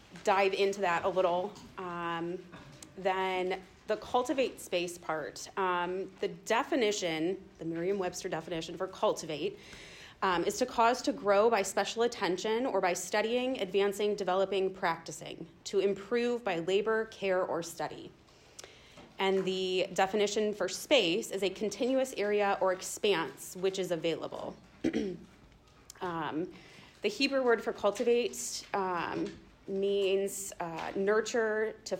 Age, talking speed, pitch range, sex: 30-49, 125 wpm, 175-205 Hz, female